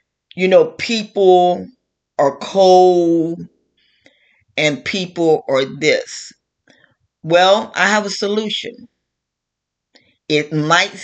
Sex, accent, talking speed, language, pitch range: female, American, 85 wpm, English, 150-205 Hz